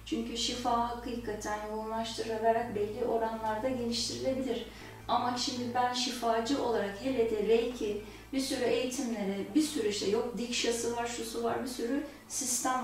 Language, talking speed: Turkish, 135 wpm